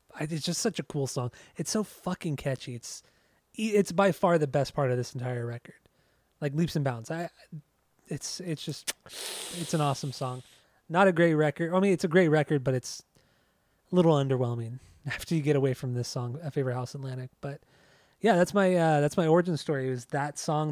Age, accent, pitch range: 20-39, American, 130-170 Hz